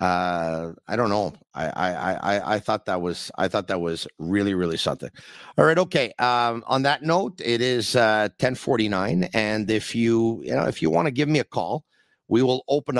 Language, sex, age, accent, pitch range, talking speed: English, male, 50-69, American, 105-130 Hz, 210 wpm